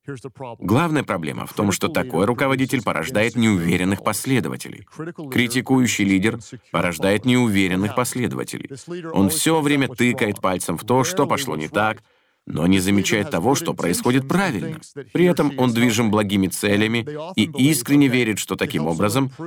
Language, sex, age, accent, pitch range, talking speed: Russian, male, 40-59, native, 105-140 Hz, 140 wpm